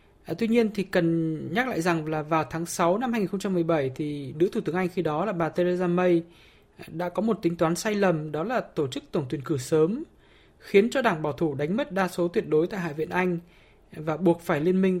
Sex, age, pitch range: male, 20-39, 165-205 Hz